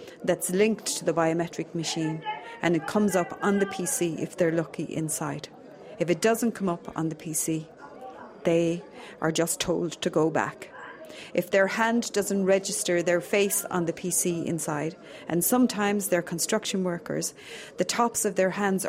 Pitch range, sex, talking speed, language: 170-200 Hz, female, 170 wpm, English